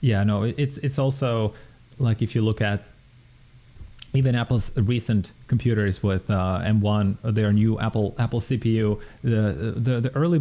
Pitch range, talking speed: 110-130 Hz, 150 wpm